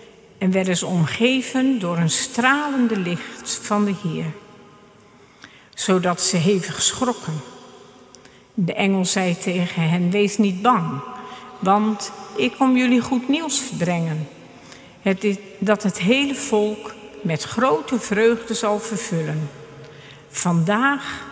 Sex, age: female, 50-69